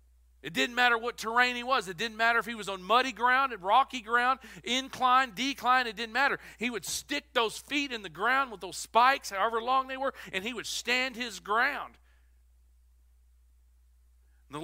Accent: American